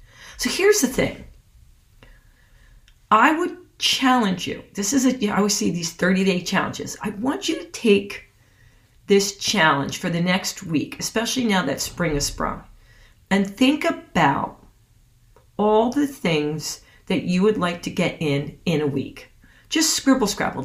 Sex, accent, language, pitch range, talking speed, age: female, American, English, 135-220 Hz, 155 wpm, 40-59